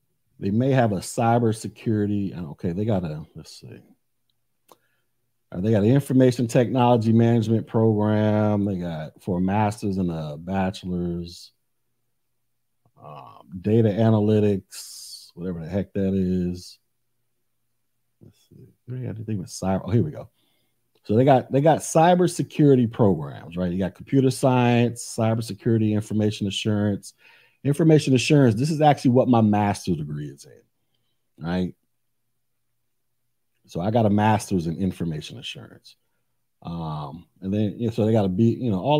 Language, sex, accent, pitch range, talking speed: English, male, American, 95-120 Hz, 135 wpm